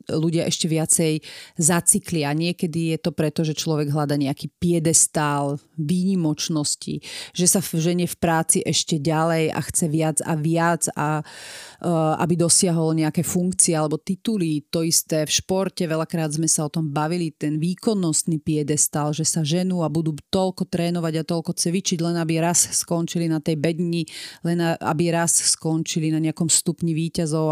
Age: 30-49